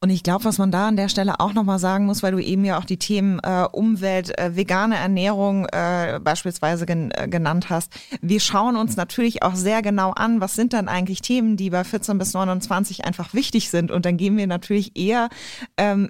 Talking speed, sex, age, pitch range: 215 wpm, female, 20-39, 180-210 Hz